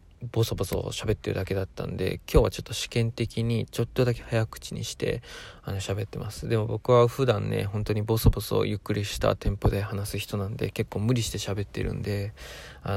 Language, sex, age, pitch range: Japanese, male, 20-39, 100-125 Hz